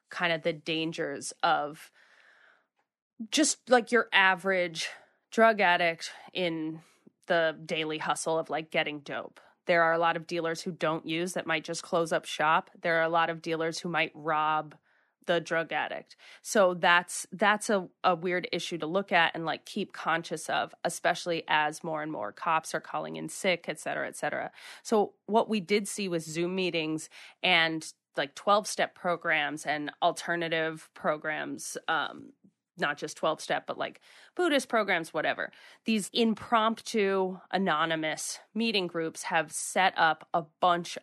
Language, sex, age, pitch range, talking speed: English, female, 20-39, 160-190 Hz, 160 wpm